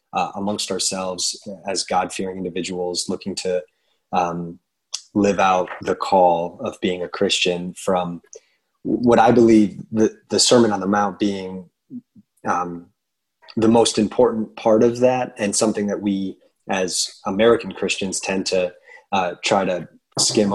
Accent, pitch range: American, 95-110 Hz